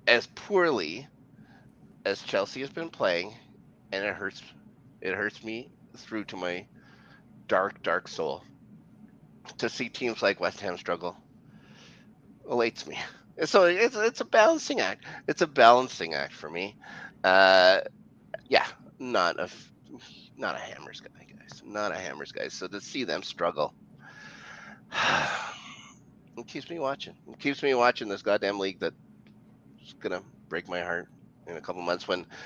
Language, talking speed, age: English, 150 wpm, 30-49